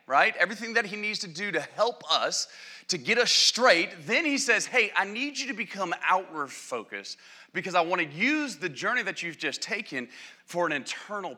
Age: 30-49